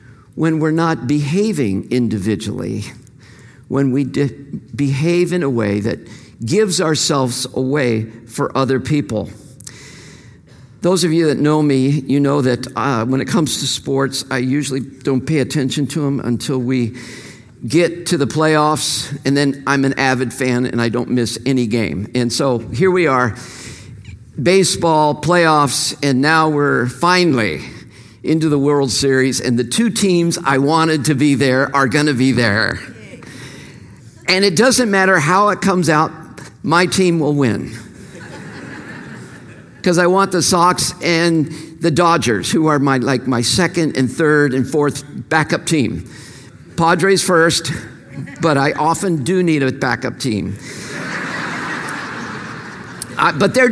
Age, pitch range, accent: 50-69, 125-165 Hz, American